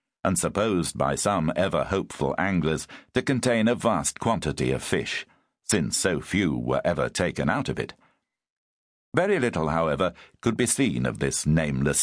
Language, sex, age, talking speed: English, male, 60-79, 160 wpm